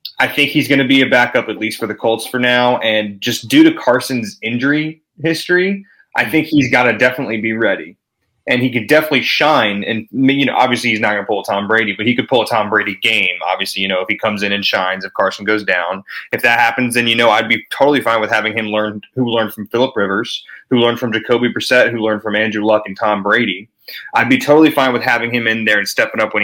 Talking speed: 255 wpm